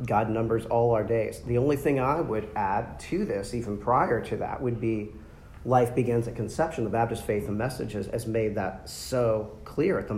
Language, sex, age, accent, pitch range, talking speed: English, male, 40-59, American, 105-125 Hz, 205 wpm